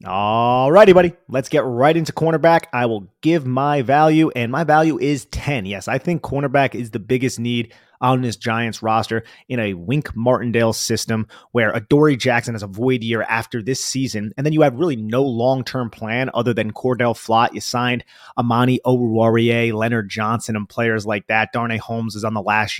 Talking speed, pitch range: 190 wpm, 115-135 Hz